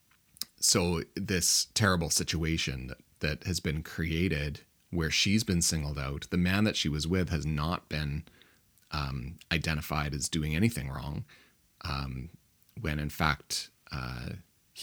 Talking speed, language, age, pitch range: 135 wpm, English, 30-49, 75-90 Hz